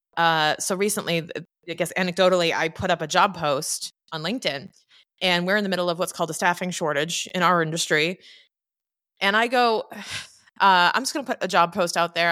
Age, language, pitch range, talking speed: 20-39, English, 170-210 Hz, 205 wpm